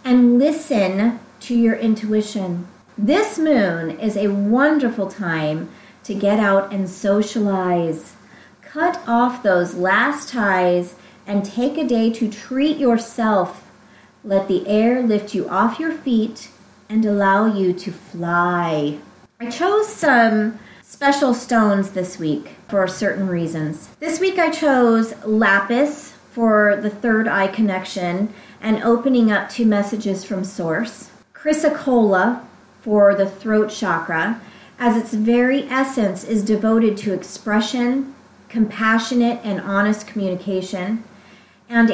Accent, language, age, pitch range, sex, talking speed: American, English, 30-49, 195-235 Hz, female, 125 wpm